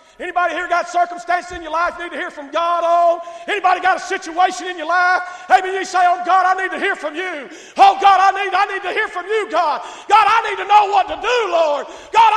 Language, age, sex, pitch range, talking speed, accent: English, 40-59, male, 265-420 Hz, 255 wpm, American